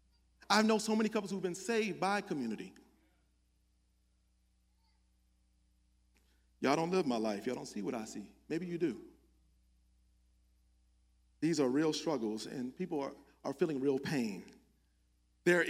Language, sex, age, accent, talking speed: English, male, 40-59, American, 140 wpm